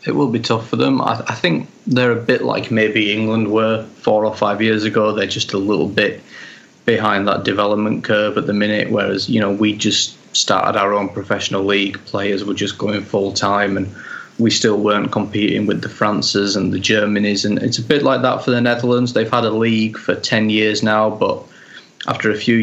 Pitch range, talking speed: 100-110 Hz, 210 wpm